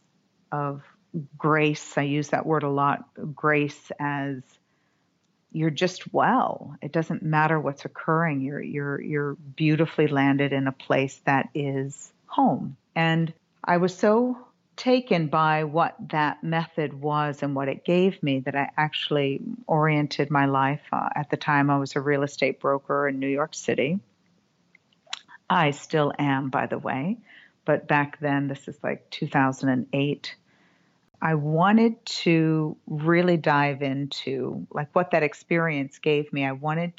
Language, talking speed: English, 150 wpm